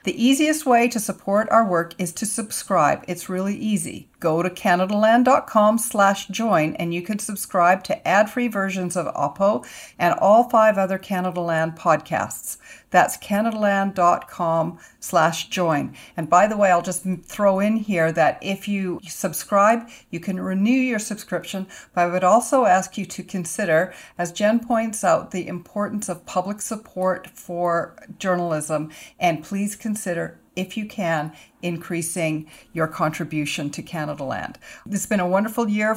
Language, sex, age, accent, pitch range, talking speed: English, female, 50-69, American, 180-220 Hz, 150 wpm